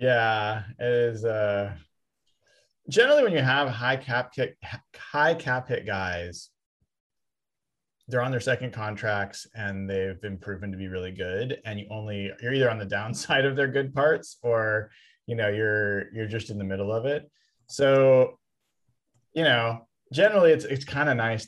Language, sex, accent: English, male, American